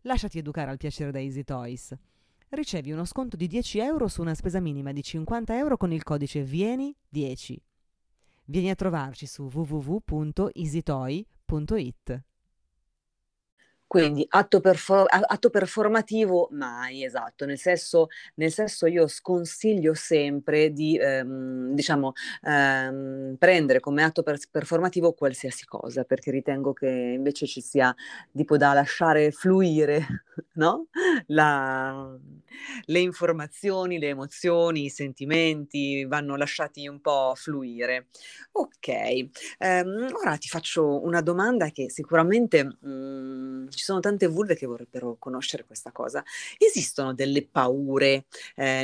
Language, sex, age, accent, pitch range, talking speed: Italian, female, 30-49, native, 135-180 Hz, 120 wpm